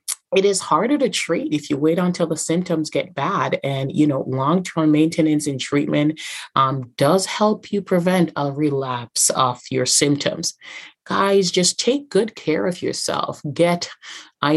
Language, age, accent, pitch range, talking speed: English, 30-49, American, 140-170 Hz, 160 wpm